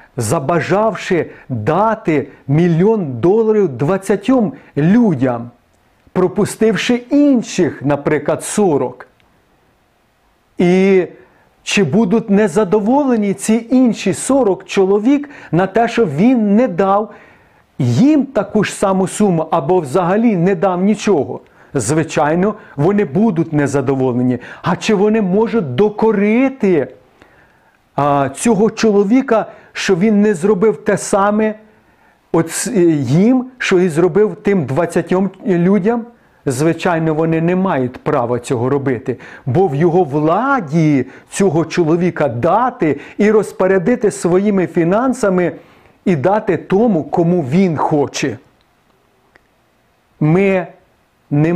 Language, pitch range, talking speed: Ukrainian, 160-215 Hz, 100 wpm